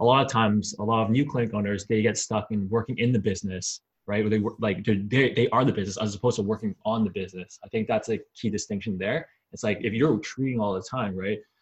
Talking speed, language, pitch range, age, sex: 265 wpm, English, 100-120 Hz, 20-39, male